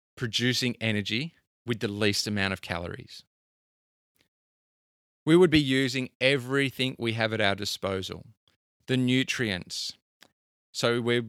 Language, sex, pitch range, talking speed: English, male, 105-135 Hz, 115 wpm